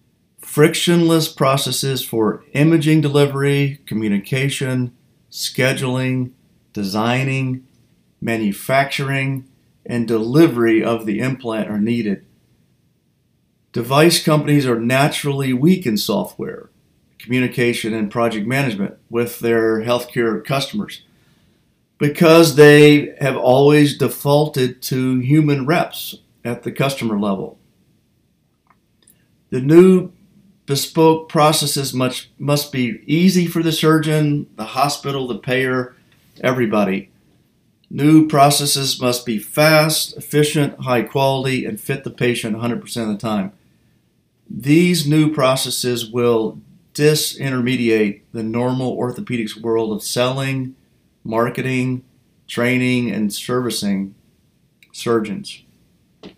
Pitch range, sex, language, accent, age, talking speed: 120-150 Hz, male, English, American, 50-69, 95 wpm